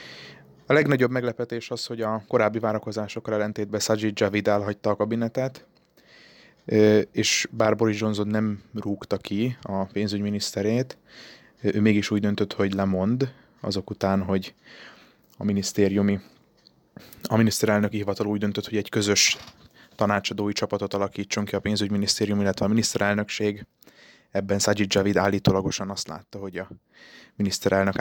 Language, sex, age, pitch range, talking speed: Hungarian, male, 20-39, 100-110 Hz, 130 wpm